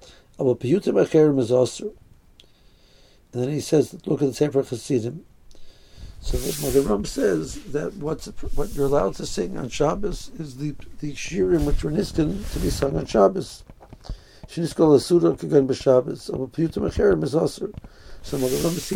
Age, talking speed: 60-79, 115 wpm